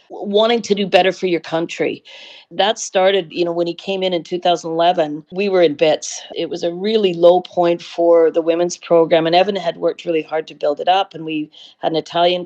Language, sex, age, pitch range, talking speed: English, female, 40-59, 160-180 Hz, 220 wpm